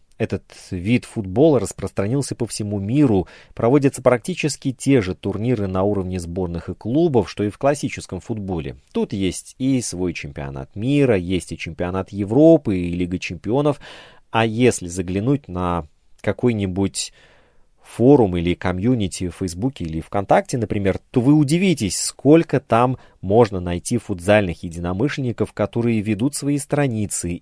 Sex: male